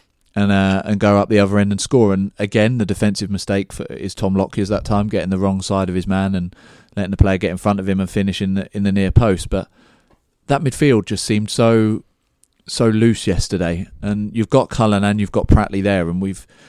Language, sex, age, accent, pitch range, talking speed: English, male, 30-49, British, 95-105 Hz, 230 wpm